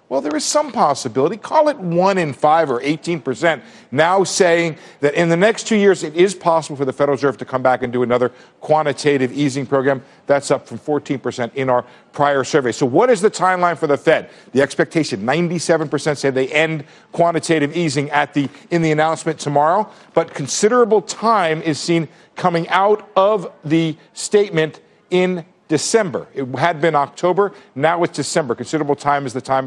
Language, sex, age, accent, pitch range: Korean, male, 50-69, American, 140-190 Hz